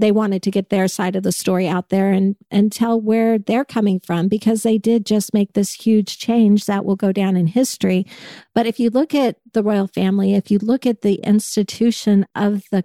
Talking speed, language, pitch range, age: 225 wpm, English, 195-230 Hz, 50-69